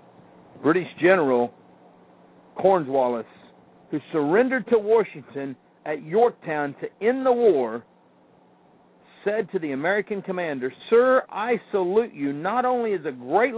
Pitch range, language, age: 140-235 Hz, English, 50-69